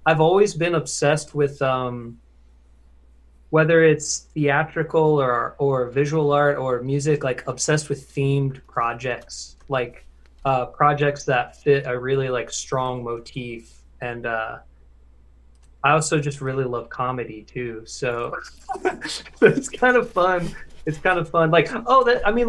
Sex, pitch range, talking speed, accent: male, 125-155 Hz, 140 wpm, American